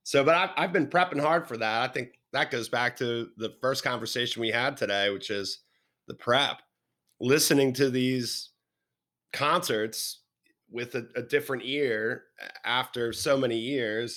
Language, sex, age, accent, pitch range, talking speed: English, male, 30-49, American, 110-140 Hz, 160 wpm